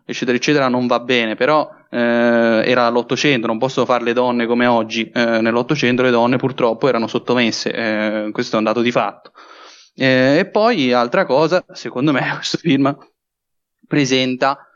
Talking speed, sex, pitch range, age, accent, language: 165 wpm, male, 120-140 Hz, 20-39, native, Italian